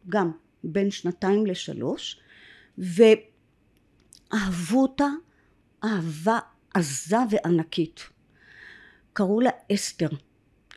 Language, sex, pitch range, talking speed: Hebrew, female, 180-225 Hz, 65 wpm